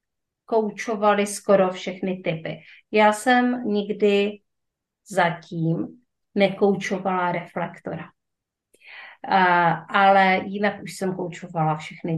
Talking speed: 80 wpm